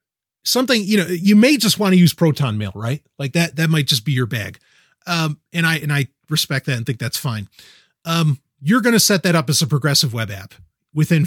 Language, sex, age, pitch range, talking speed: English, male, 30-49, 130-170 Hz, 230 wpm